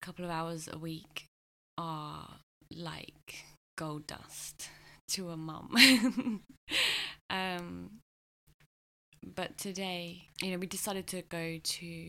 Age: 20-39